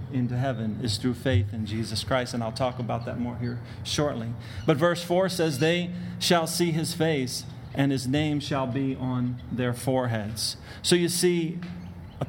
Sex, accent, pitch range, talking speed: male, American, 120-160 Hz, 180 wpm